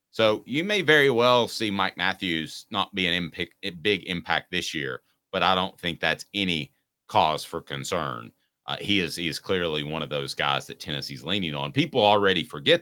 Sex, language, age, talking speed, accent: male, English, 30-49, 185 wpm, American